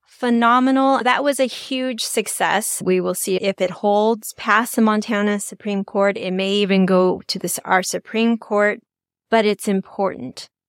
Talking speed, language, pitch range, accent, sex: 165 wpm, English, 195-235 Hz, American, female